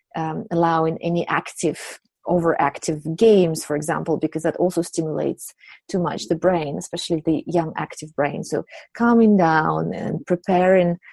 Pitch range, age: 160-185 Hz, 30-49